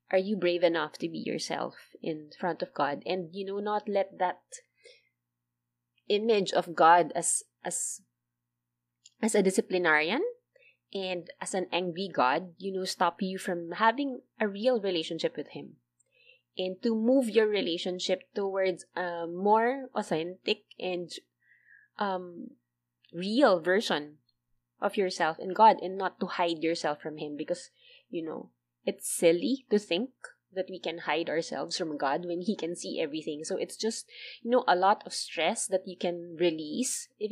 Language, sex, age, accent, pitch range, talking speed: English, female, 20-39, Filipino, 155-200 Hz, 160 wpm